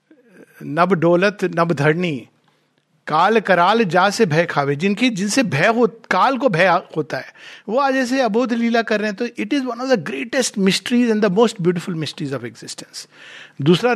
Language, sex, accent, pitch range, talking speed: Hindi, male, native, 170-235 Hz, 185 wpm